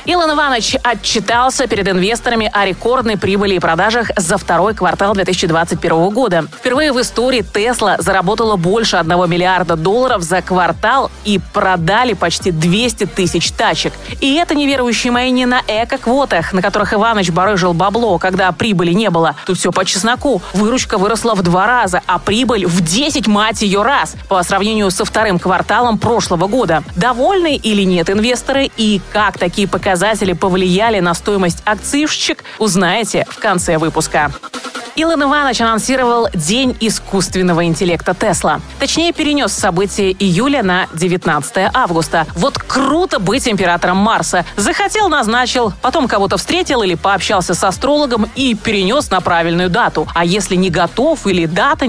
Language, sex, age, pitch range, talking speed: Russian, female, 20-39, 180-240 Hz, 150 wpm